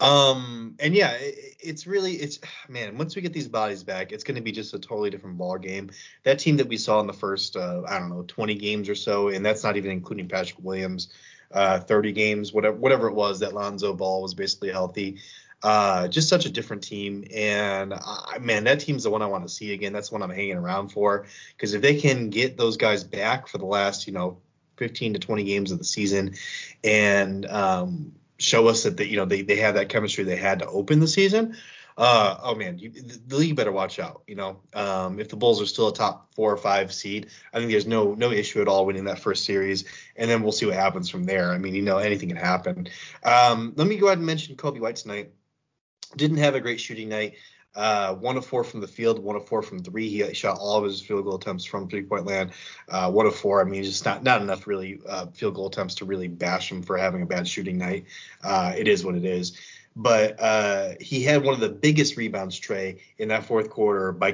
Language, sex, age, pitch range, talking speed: English, male, 20-39, 95-130 Hz, 240 wpm